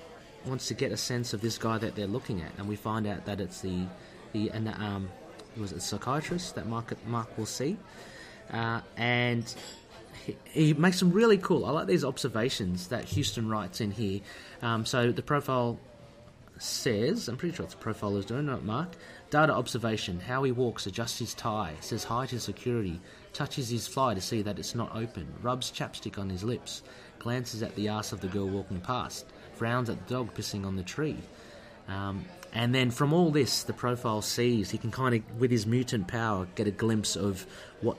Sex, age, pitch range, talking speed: male, 30-49, 105-125 Hz, 205 wpm